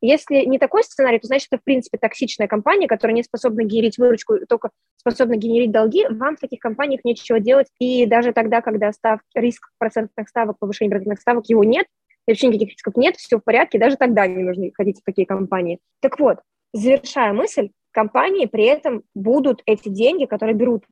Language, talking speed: Russian, 185 wpm